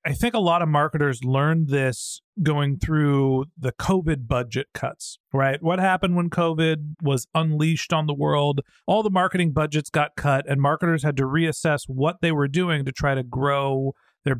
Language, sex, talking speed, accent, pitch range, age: English, male, 185 wpm, American, 140-170 Hz, 40-59